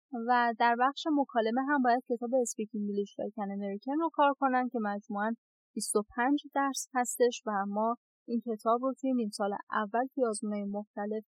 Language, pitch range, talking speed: Persian, 215-260 Hz, 160 wpm